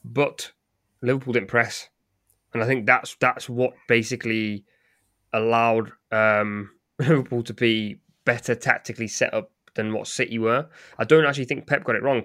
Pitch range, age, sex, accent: 110-125 Hz, 20-39, male, British